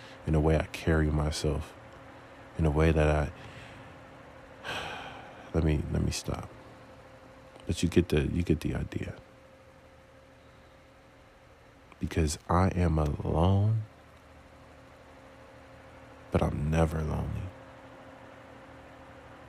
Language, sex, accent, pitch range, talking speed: English, male, American, 80-125 Hz, 100 wpm